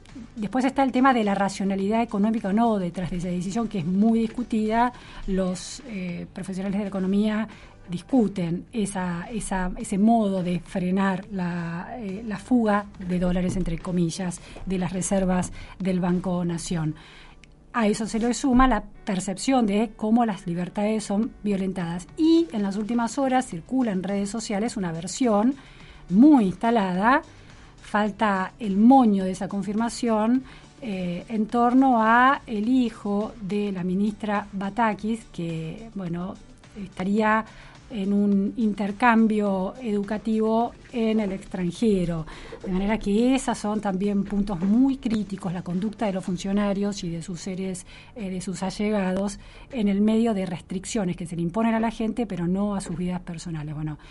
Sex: female